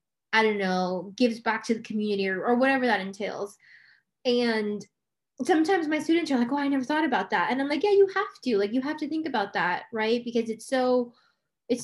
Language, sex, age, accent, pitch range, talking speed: English, female, 10-29, American, 205-250 Hz, 225 wpm